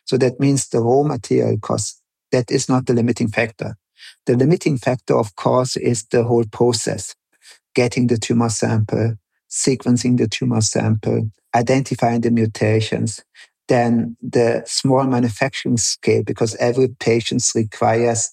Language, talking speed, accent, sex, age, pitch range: English, 140 wpm, German, male, 50-69, 115-130 Hz